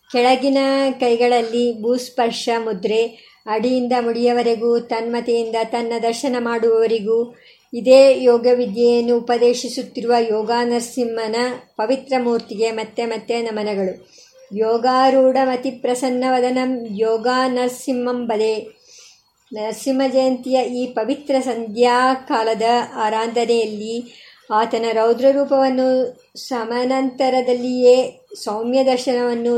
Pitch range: 230-260 Hz